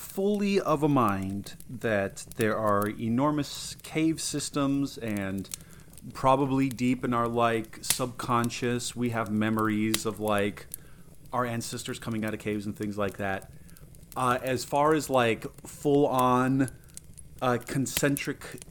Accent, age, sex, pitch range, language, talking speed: American, 30-49, male, 110-140 Hz, English, 125 wpm